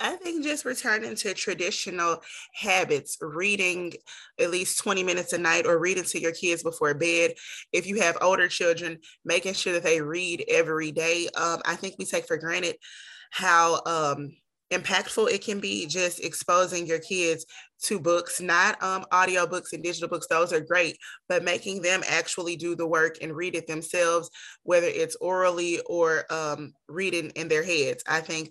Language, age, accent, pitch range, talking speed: English, 20-39, American, 165-190 Hz, 175 wpm